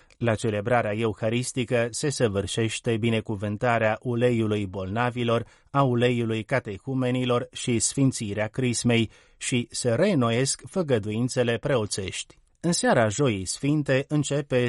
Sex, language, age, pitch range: male, Romanian, 30-49, 110-130 Hz